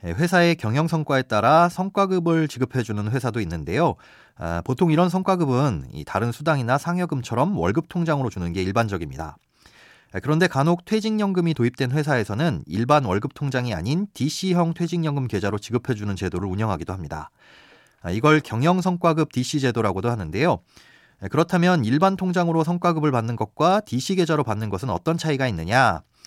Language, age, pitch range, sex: Korean, 30-49, 110-165 Hz, male